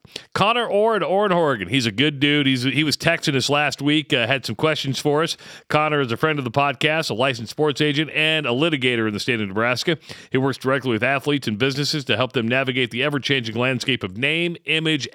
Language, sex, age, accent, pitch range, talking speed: English, male, 40-59, American, 125-155 Hz, 220 wpm